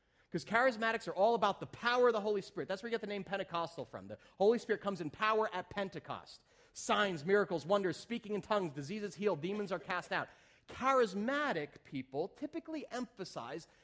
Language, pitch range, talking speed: English, 160-230 Hz, 185 wpm